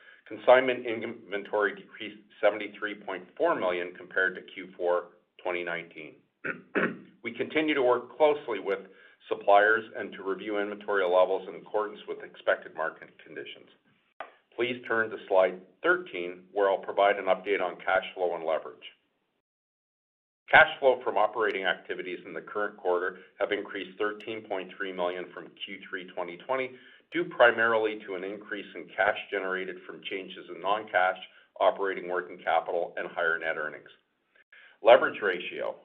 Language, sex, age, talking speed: English, male, 50-69, 130 wpm